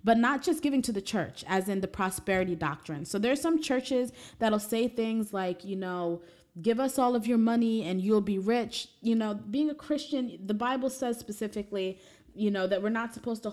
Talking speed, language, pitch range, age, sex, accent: 215 wpm, English, 180-230 Hz, 20-39, female, American